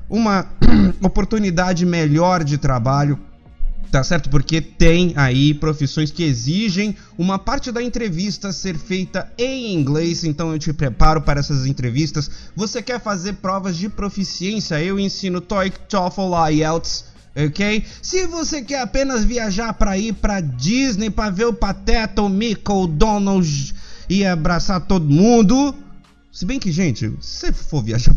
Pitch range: 155-225 Hz